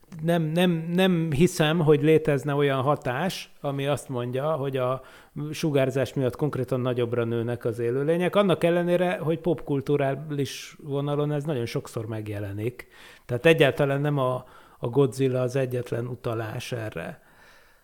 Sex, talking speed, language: male, 130 wpm, Hungarian